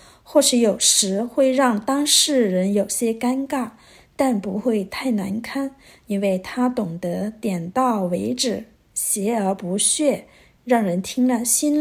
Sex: female